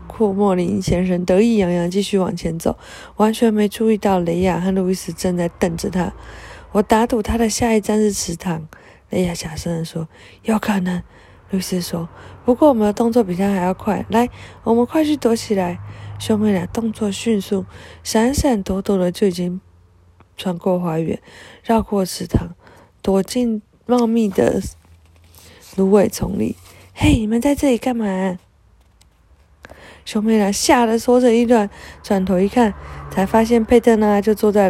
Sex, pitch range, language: female, 180-230 Hz, Chinese